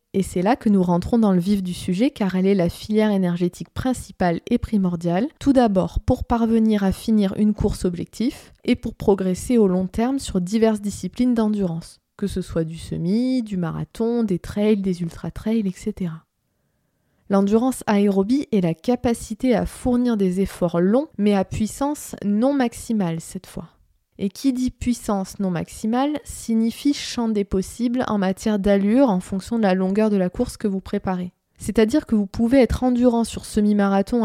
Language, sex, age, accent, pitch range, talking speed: French, female, 20-39, French, 190-235 Hz, 175 wpm